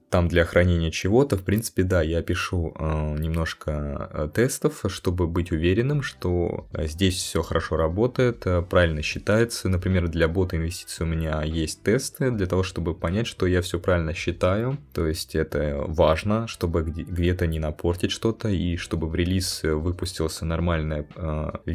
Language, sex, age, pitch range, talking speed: Russian, male, 20-39, 80-95 Hz, 150 wpm